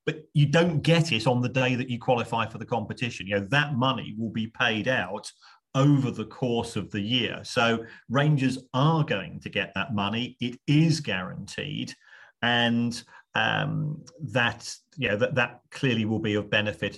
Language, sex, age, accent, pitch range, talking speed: English, male, 40-59, British, 105-130 Hz, 180 wpm